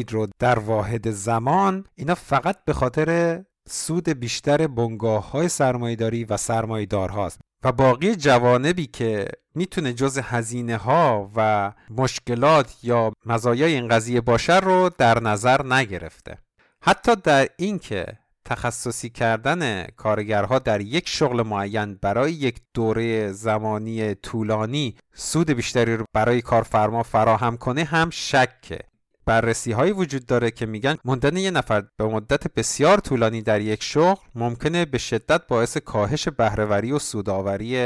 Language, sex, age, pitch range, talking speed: Persian, male, 50-69, 110-140 Hz, 125 wpm